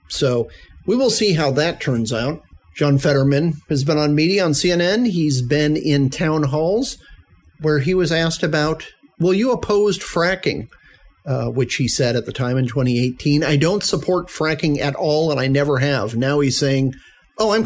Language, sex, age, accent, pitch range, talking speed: English, male, 50-69, American, 130-160 Hz, 185 wpm